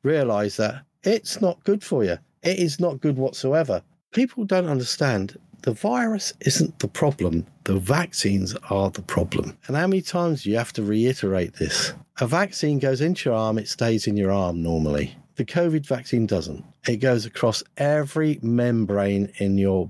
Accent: British